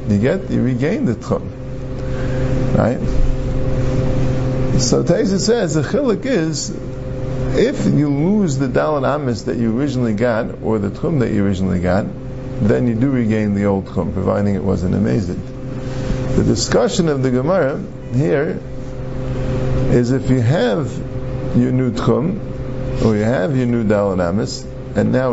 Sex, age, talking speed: male, 50-69, 145 wpm